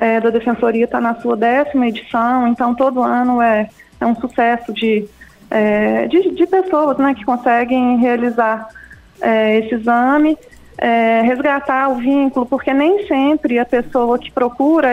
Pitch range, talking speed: 230-270 Hz, 135 wpm